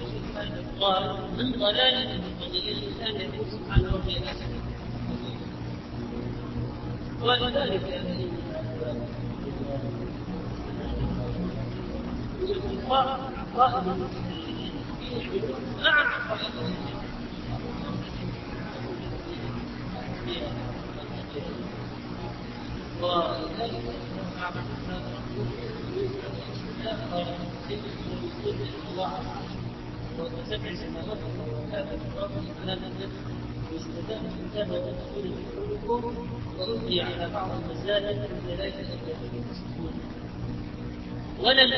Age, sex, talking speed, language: 40-59, male, 30 wpm, Arabic